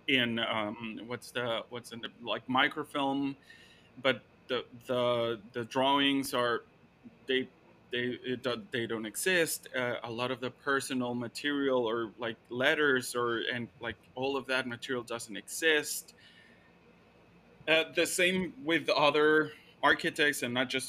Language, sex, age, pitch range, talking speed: English, male, 20-39, 125-155 Hz, 140 wpm